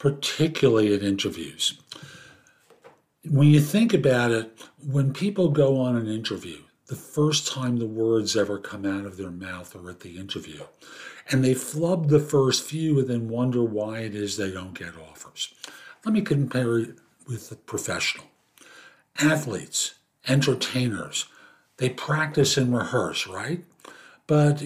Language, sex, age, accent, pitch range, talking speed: English, male, 50-69, American, 120-150 Hz, 145 wpm